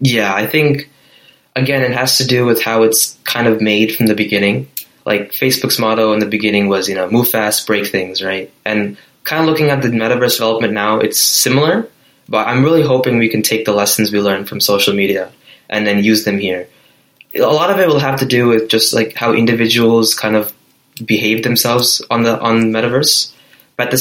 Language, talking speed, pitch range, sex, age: English, 210 wpm, 105-130 Hz, male, 20-39